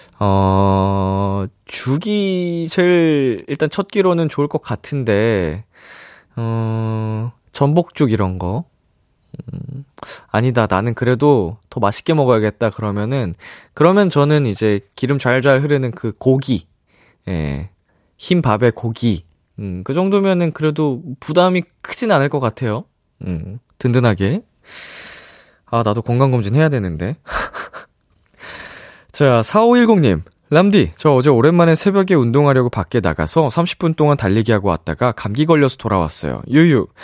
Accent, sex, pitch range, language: native, male, 105-155 Hz, Korean